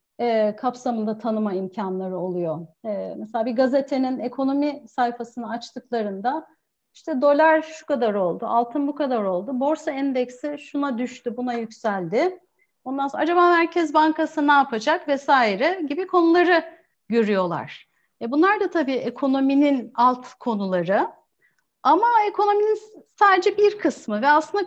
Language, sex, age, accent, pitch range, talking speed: Turkish, female, 40-59, native, 225-310 Hz, 120 wpm